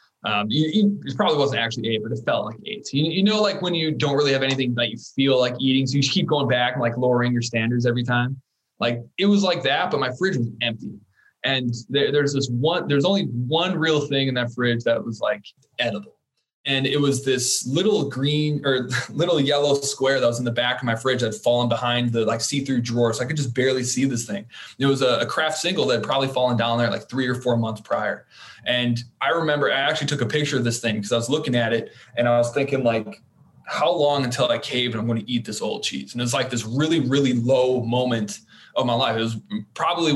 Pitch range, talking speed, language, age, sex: 120-140 Hz, 255 wpm, English, 20-39, male